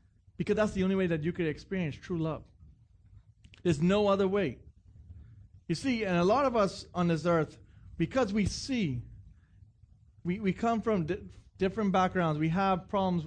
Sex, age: male, 30-49